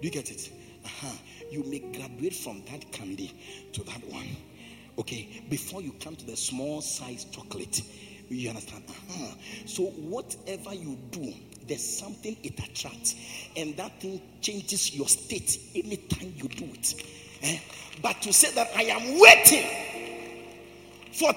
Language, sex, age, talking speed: English, male, 50-69, 145 wpm